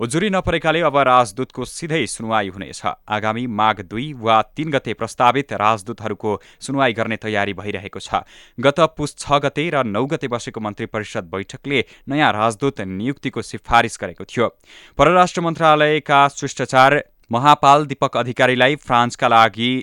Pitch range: 110-140 Hz